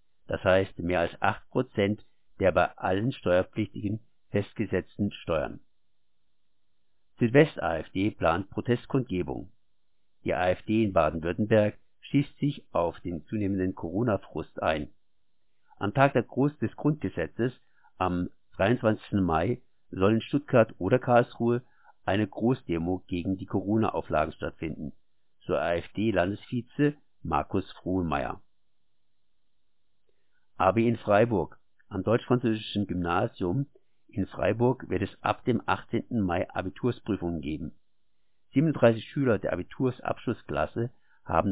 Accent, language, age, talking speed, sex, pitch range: German, German, 60-79, 100 wpm, male, 95-120 Hz